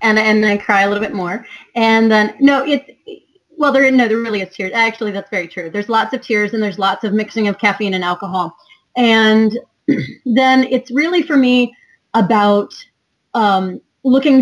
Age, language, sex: 30-49, English, female